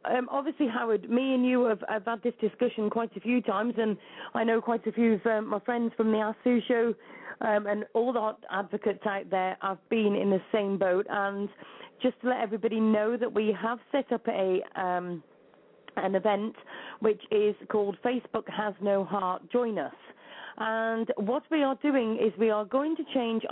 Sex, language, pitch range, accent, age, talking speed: female, English, 200-245 Hz, British, 40-59, 195 wpm